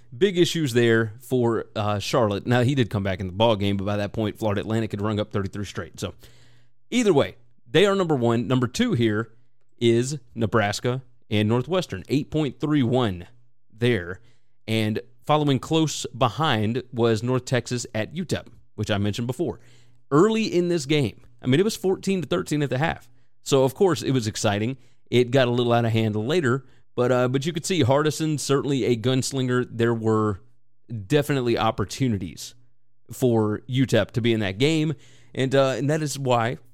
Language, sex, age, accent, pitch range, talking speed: English, male, 30-49, American, 115-135 Hz, 175 wpm